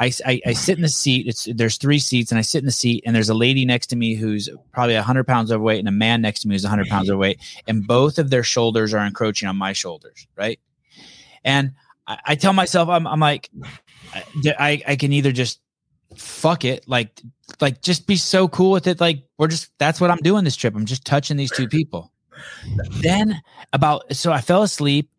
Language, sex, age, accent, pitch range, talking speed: English, male, 20-39, American, 110-145 Hz, 230 wpm